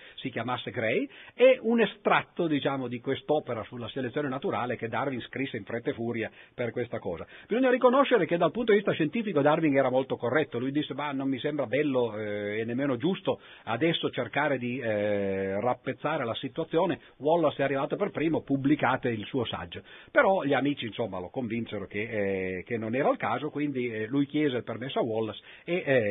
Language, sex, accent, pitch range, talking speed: Italian, male, native, 115-165 Hz, 190 wpm